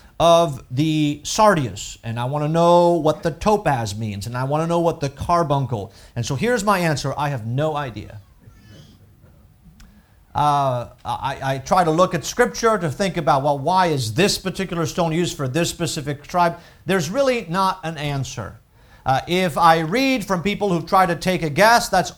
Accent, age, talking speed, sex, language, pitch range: American, 40-59, 185 wpm, male, English, 140-190 Hz